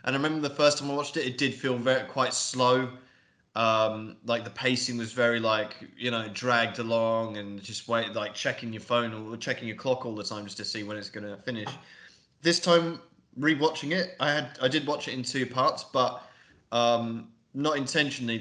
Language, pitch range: English, 115-145 Hz